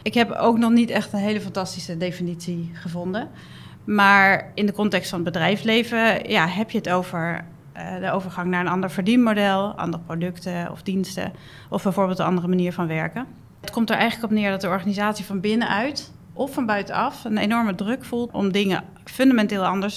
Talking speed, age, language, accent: 185 wpm, 30-49, Dutch, Dutch